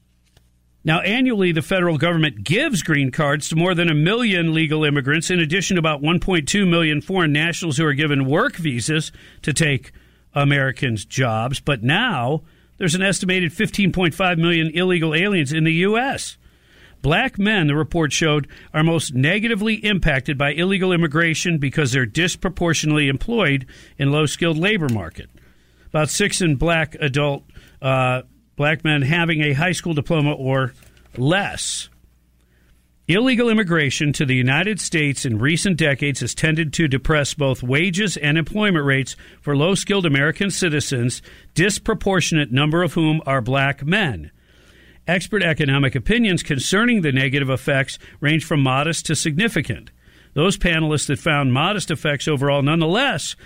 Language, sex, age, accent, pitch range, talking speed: English, male, 50-69, American, 140-175 Hz, 145 wpm